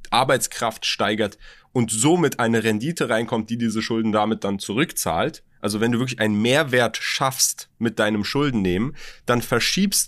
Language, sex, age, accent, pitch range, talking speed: German, male, 30-49, German, 110-170 Hz, 150 wpm